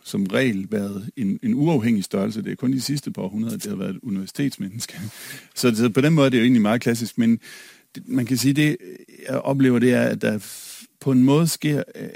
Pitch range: 120-195 Hz